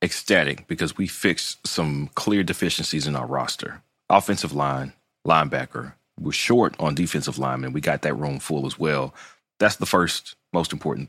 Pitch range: 75-95 Hz